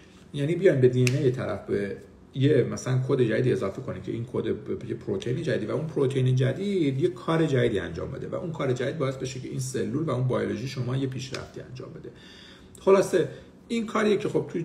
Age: 50-69